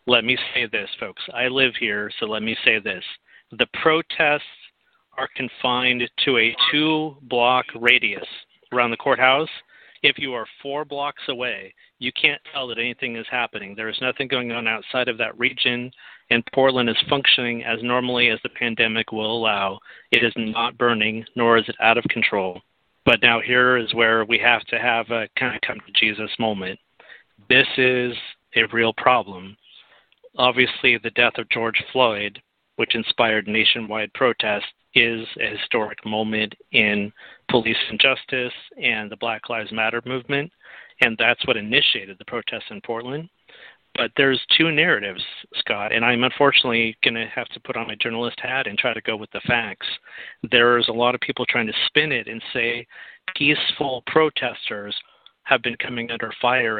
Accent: American